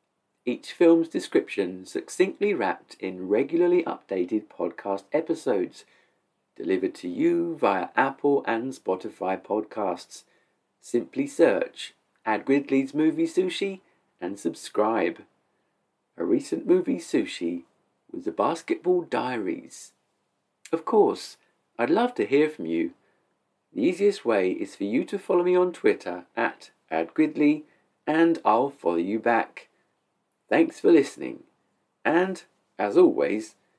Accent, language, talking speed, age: British, English, 115 wpm, 40-59